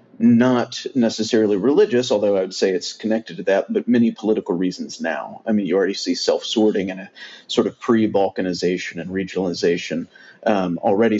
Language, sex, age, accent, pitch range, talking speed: English, male, 40-59, American, 100-115 Hz, 165 wpm